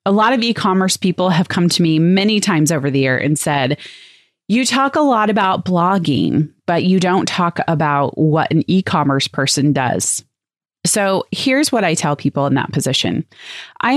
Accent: American